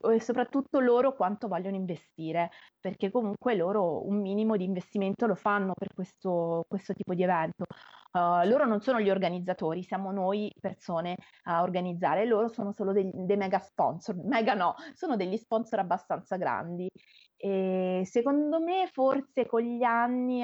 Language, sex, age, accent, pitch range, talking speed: Italian, female, 30-49, native, 185-235 Hz, 155 wpm